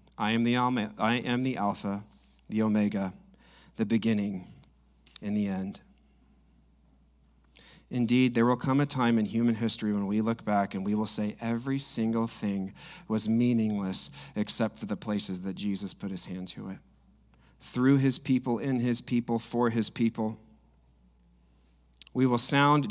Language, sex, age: English, male, 40-59